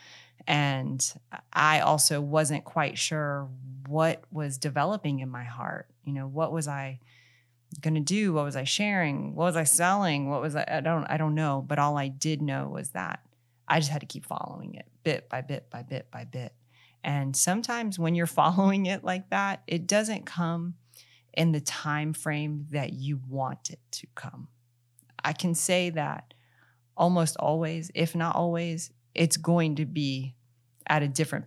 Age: 30-49